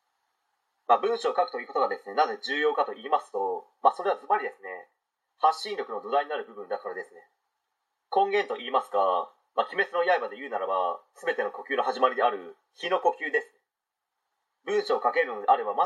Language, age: Japanese, 30-49